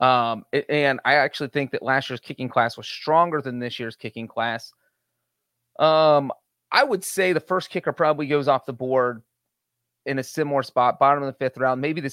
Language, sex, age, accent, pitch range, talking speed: English, male, 30-49, American, 125-145 Hz, 200 wpm